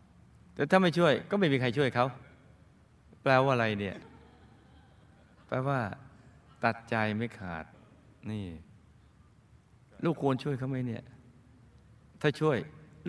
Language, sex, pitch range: Thai, male, 110-145 Hz